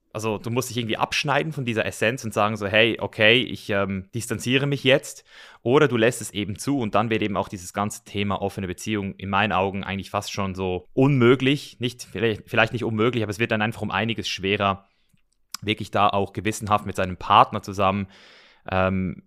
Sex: male